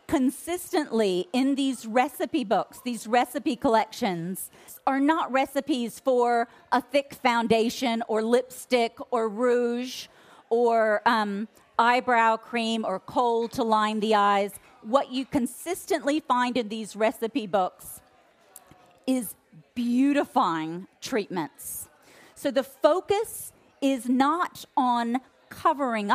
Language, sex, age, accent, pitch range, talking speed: English, female, 40-59, American, 225-280 Hz, 110 wpm